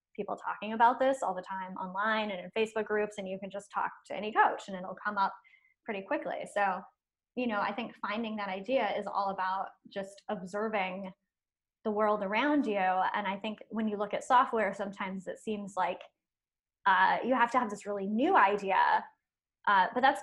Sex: female